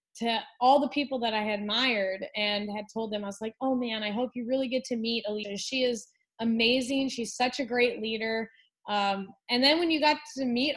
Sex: female